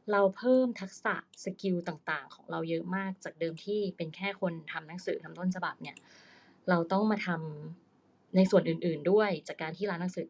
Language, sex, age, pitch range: Thai, female, 20-39, 170-210 Hz